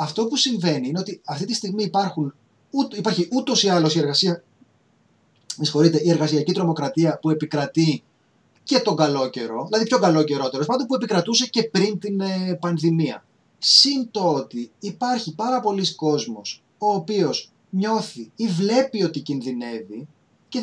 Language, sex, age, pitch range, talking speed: Greek, male, 30-49, 155-230 Hz, 155 wpm